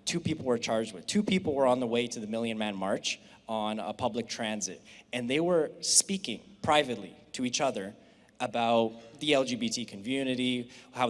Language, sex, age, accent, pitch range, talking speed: English, male, 20-39, American, 115-150 Hz, 180 wpm